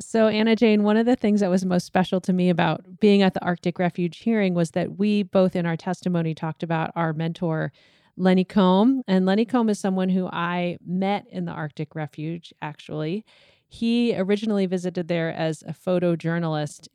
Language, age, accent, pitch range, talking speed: English, 30-49, American, 160-190 Hz, 190 wpm